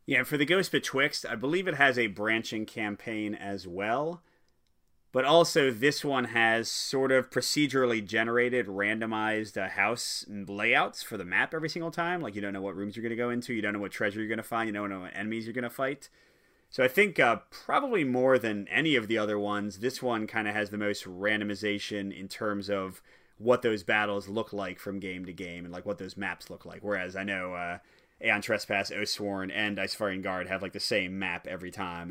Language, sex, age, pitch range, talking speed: English, male, 30-49, 100-125 Hz, 220 wpm